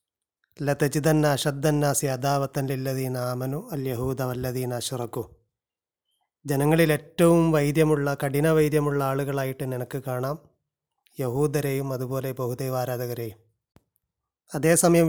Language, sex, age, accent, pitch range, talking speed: Malayalam, male, 30-49, native, 130-160 Hz, 85 wpm